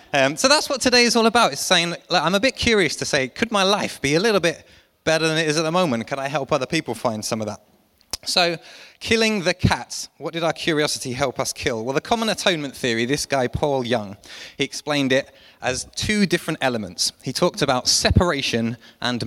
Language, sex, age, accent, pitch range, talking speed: English, male, 20-39, British, 115-160 Hz, 225 wpm